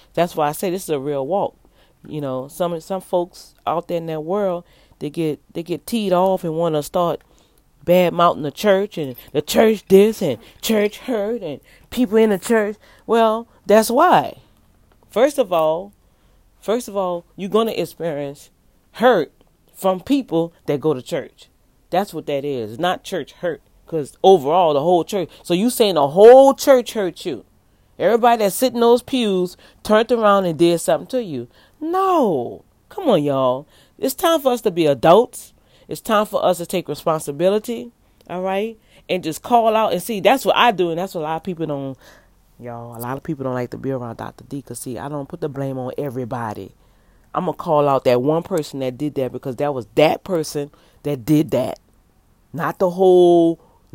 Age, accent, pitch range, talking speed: 40-59, American, 145-210 Hz, 200 wpm